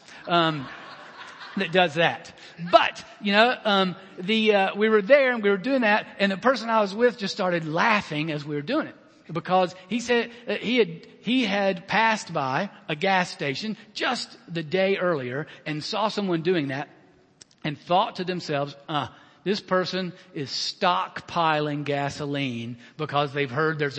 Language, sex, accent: English, male, American